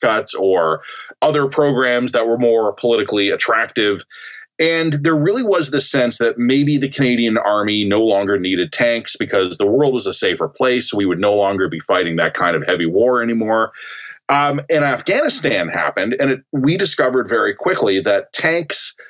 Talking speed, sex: 175 wpm, male